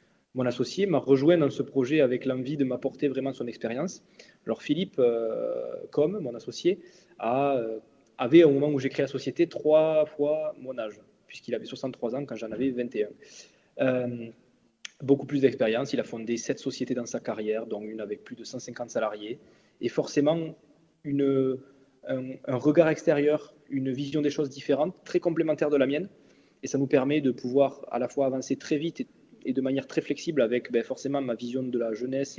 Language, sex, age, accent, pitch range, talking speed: French, male, 20-39, French, 125-150 Hz, 195 wpm